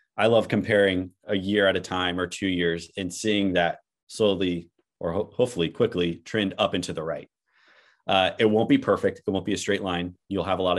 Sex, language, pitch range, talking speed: male, English, 85-100 Hz, 210 wpm